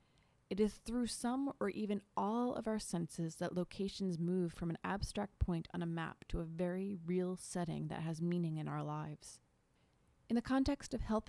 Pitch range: 160-195 Hz